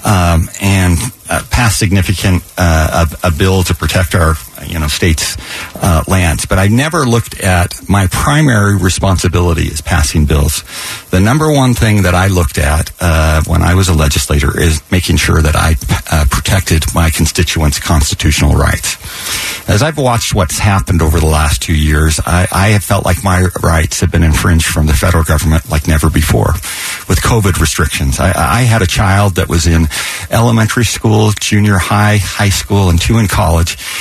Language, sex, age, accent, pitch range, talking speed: English, male, 50-69, American, 85-105 Hz, 180 wpm